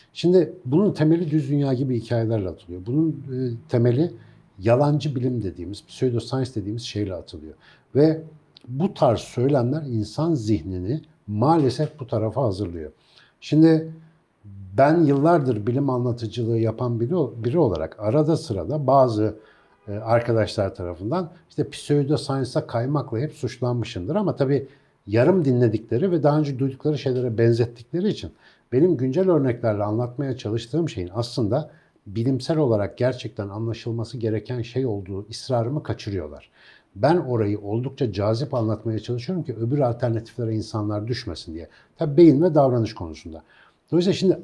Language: Turkish